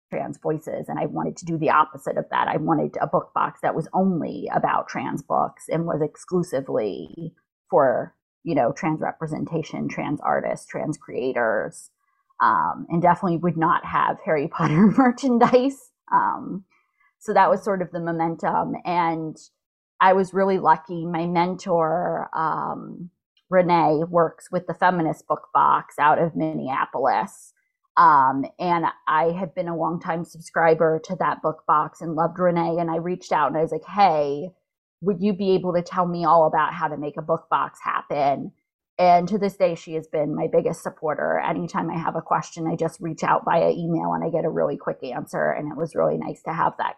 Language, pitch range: English, 165-200 Hz